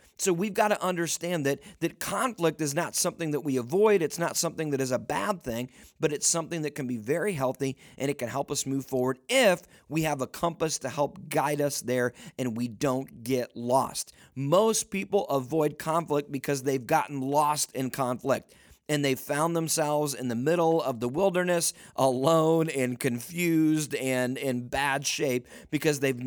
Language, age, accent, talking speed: English, 40-59, American, 185 wpm